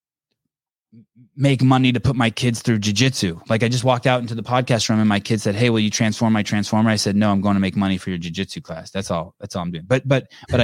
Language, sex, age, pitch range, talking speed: English, male, 20-39, 100-115 Hz, 270 wpm